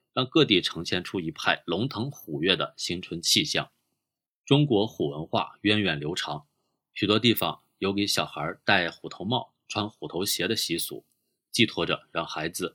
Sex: male